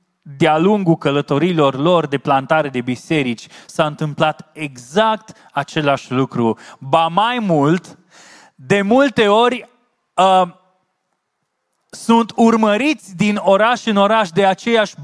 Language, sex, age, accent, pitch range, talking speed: Romanian, male, 20-39, native, 140-195 Hz, 110 wpm